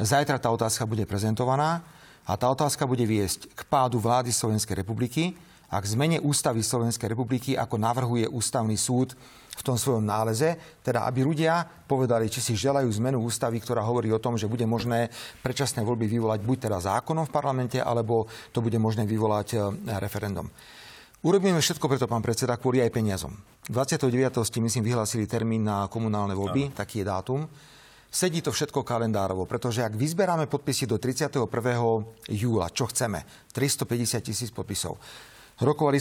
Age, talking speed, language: 40-59, 160 wpm, Slovak